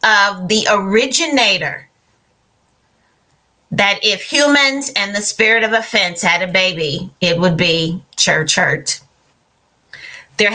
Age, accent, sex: 40-59, American, female